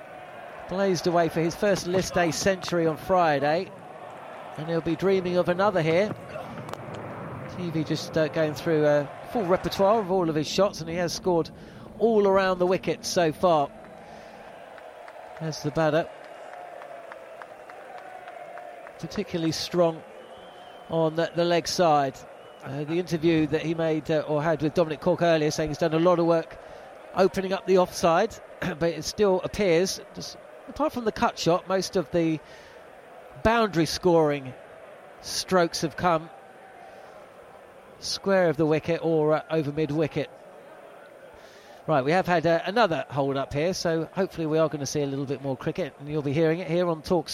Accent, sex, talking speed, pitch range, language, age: British, male, 165 wpm, 155-180 Hz, English, 40-59